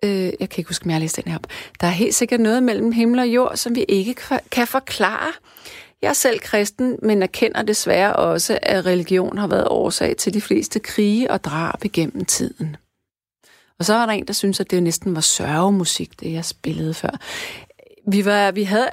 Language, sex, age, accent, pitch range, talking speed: Danish, female, 30-49, native, 185-240 Hz, 205 wpm